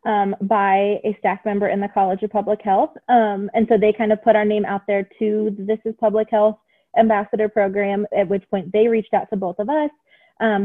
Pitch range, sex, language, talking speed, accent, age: 185-220 Hz, female, English, 230 wpm, American, 20-39